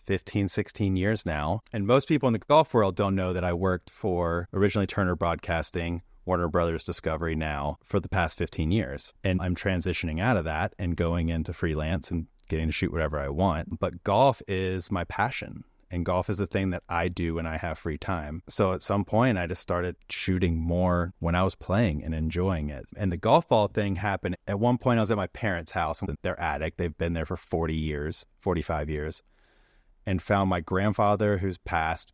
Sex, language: male, English